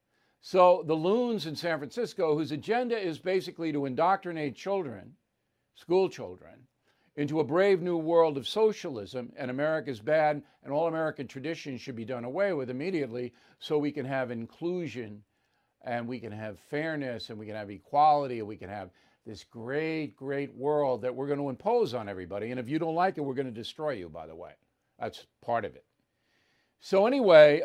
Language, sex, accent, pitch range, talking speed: English, male, American, 130-170 Hz, 185 wpm